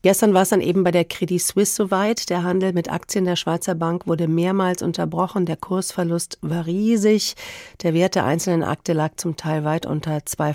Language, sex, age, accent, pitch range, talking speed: German, female, 40-59, German, 165-195 Hz, 200 wpm